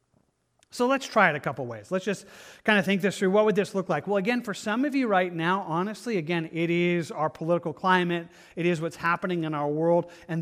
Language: English